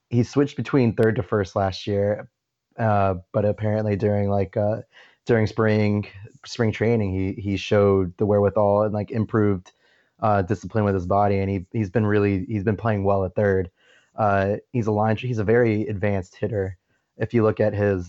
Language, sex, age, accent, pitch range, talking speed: English, male, 20-39, American, 100-110 Hz, 185 wpm